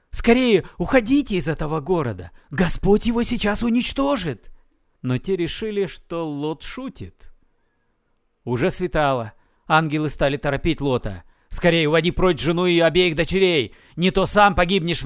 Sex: male